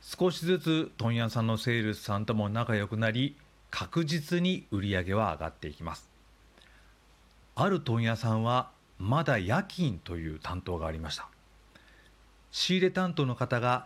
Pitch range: 105-145 Hz